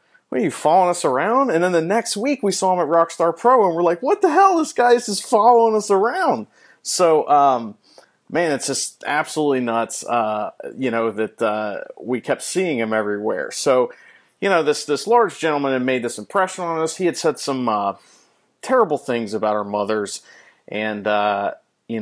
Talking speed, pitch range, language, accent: 200 wpm, 110-165 Hz, English, American